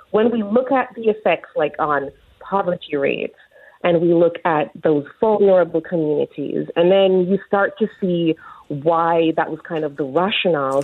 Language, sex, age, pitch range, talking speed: English, female, 30-49, 155-200 Hz, 165 wpm